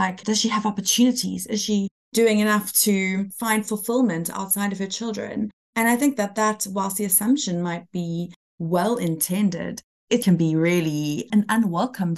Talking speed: 165 wpm